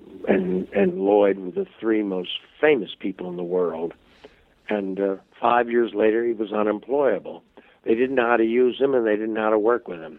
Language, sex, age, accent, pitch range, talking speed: English, male, 60-79, American, 105-135 Hz, 210 wpm